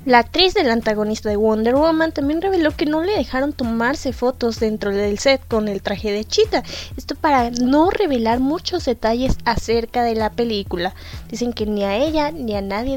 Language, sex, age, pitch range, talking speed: Spanish, female, 20-39, 210-275 Hz, 190 wpm